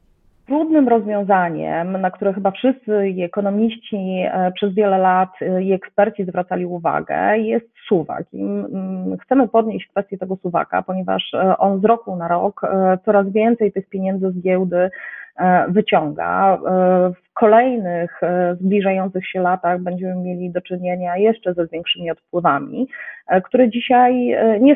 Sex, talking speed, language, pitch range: female, 120 wpm, Polish, 175-210 Hz